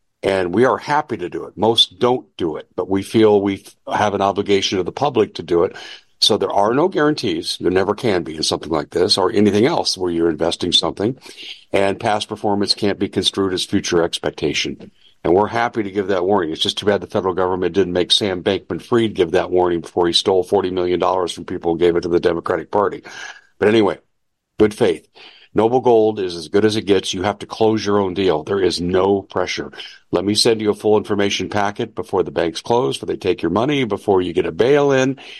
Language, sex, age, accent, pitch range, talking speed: English, male, 60-79, American, 95-115 Hz, 225 wpm